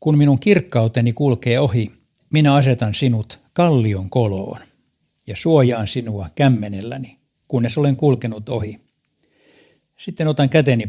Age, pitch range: 60-79, 105-135 Hz